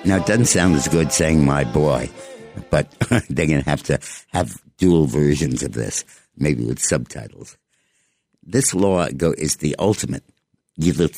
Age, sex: 60-79, male